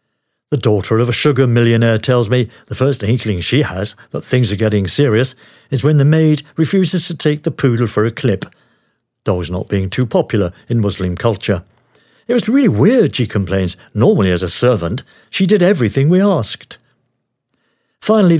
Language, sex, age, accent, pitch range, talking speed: English, male, 60-79, British, 110-140 Hz, 175 wpm